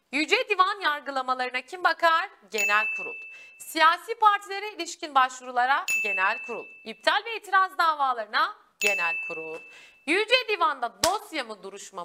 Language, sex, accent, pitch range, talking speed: Turkish, female, native, 235-390 Hz, 120 wpm